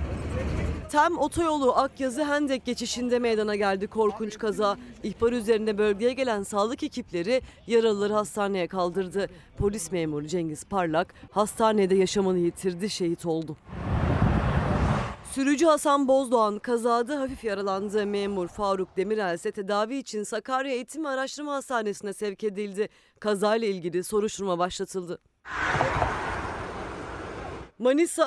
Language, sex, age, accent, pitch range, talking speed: Turkish, female, 40-59, native, 195-265 Hz, 105 wpm